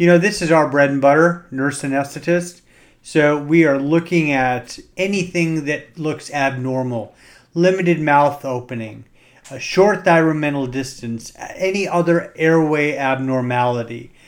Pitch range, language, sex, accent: 135-165 Hz, English, male, American